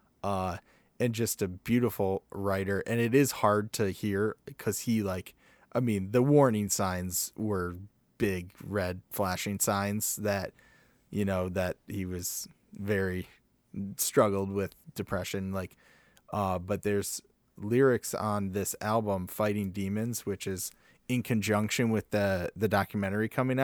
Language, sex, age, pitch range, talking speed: English, male, 20-39, 95-110 Hz, 135 wpm